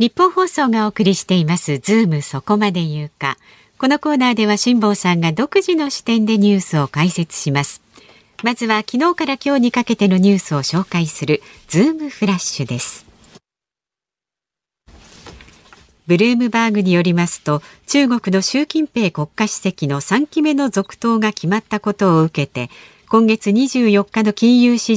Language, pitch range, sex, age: Japanese, 165-235 Hz, female, 50-69